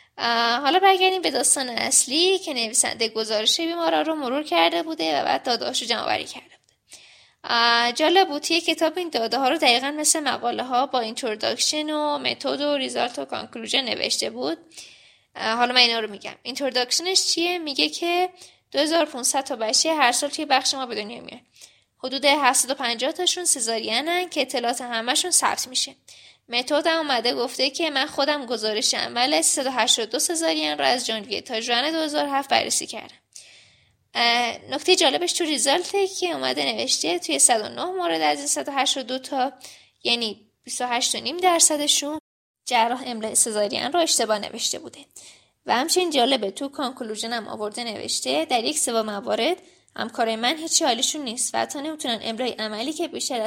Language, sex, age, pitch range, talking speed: Persian, female, 10-29, 235-315 Hz, 155 wpm